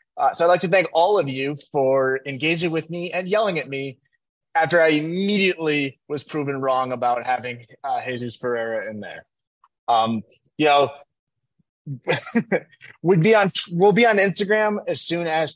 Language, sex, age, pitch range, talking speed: English, male, 20-39, 135-175 Hz, 165 wpm